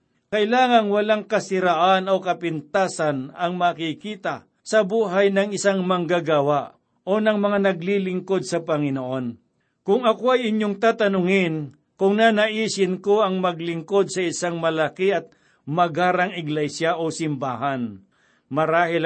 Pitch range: 160-195 Hz